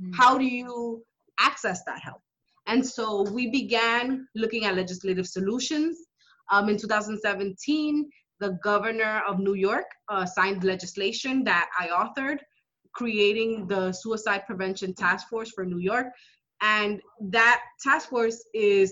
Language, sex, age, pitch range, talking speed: English, female, 20-39, 190-240 Hz, 135 wpm